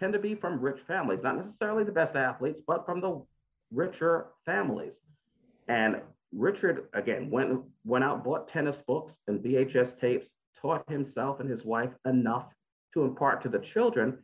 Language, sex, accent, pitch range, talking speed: English, male, American, 130-180 Hz, 160 wpm